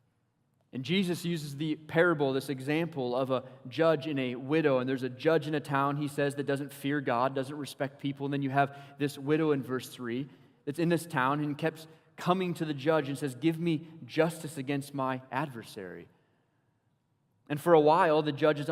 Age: 20-39